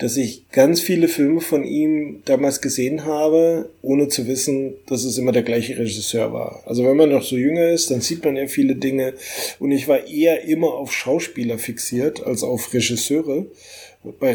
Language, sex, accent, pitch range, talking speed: German, male, German, 120-145 Hz, 190 wpm